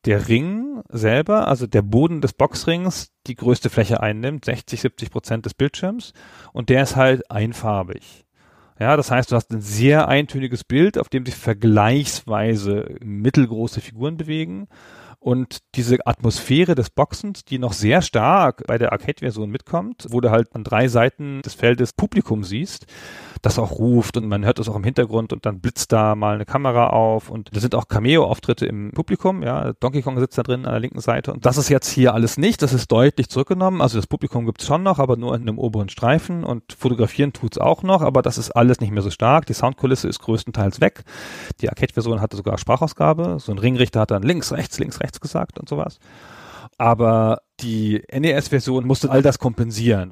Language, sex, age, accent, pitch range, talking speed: German, male, 40-59, German, 110-135 Hz, 195 wpm